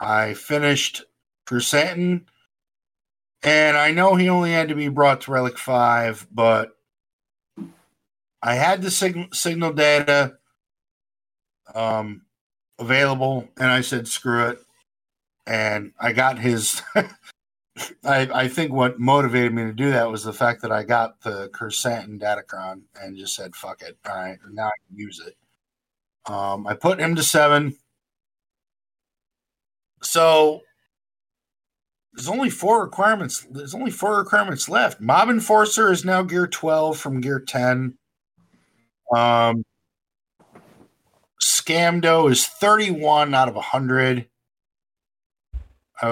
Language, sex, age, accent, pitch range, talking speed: English, male, 50-69, American, 115-150 Hz, 120 wpm